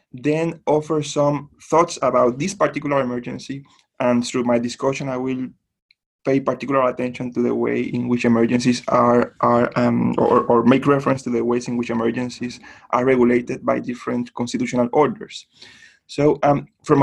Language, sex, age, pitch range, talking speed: English, male, 20-39, 125-145 Hz, 160 wpm